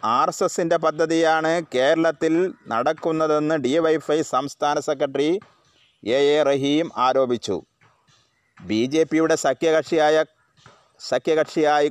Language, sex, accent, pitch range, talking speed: Malayalam, male, native, 135-160 Hz, 100 wpm